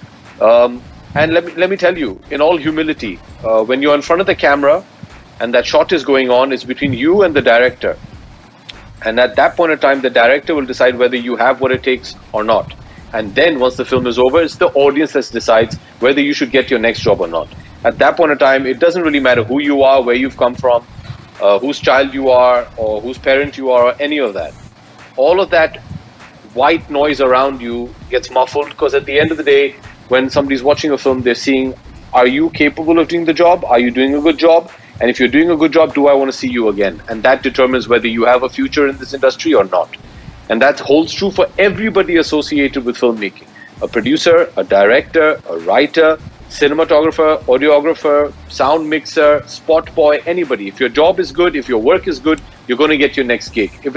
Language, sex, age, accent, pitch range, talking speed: Hindi, male, 40-59, native, 125-155 Hz, 225 wpm